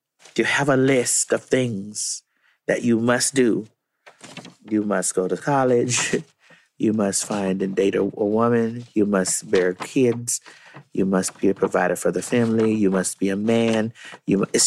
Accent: American